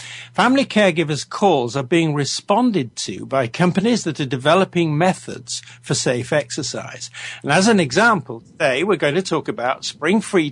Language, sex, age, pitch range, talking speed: English, male, 60-79, 125-180 Hz, 155 wpm